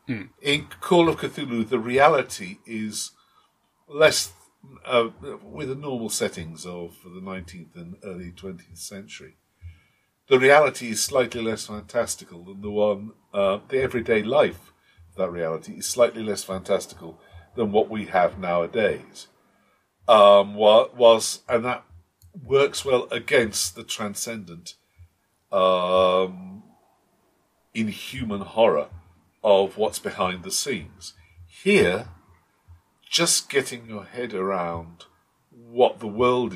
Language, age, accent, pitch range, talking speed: English, 50-69, British, 90-115 Hz, 115 wpm